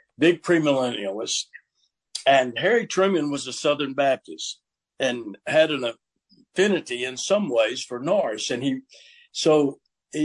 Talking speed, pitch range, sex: 130 wpm, 130-175 Hz, male